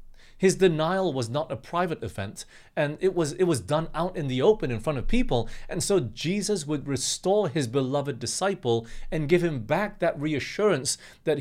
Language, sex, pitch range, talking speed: English, male, 110-155 Hz, 190 wpm